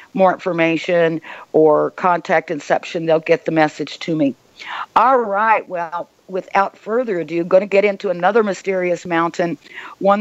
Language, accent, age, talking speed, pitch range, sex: English, American, 50-69, 145 wpm, 165-200 Hz, female